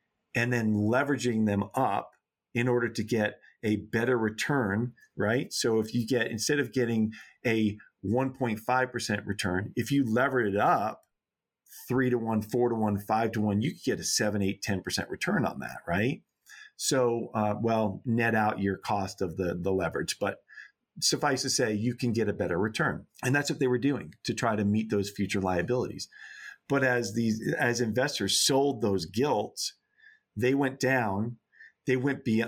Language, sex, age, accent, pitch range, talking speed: English, male, 40-59, American, 105-125 Hz, 185 wpm